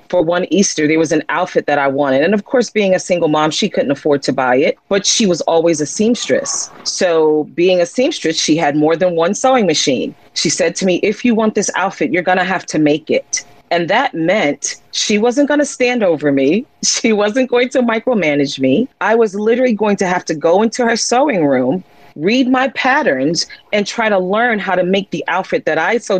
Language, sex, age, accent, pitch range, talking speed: English, female, 40-59, American, 160-230 Hz, 220 wpm